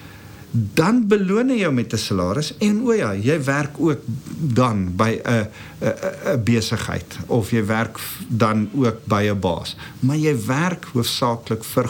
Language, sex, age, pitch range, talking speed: English, male, 50-69, 115-175 Hz, 145 wpm